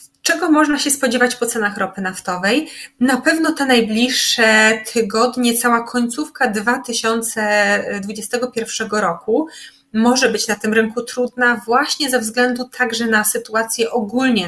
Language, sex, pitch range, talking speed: Polish, female, 225-265 Hz, 125 wpm